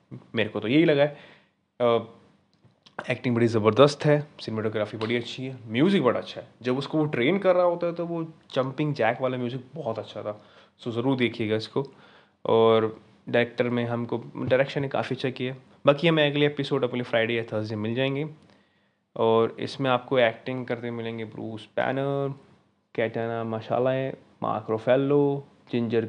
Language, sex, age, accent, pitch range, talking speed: Hindi, male, 20-39, native, 115-140 Hz, 165 wpm